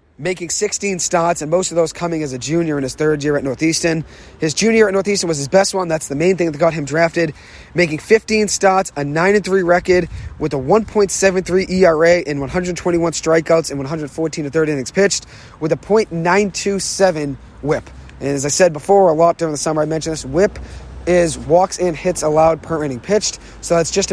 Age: 30-49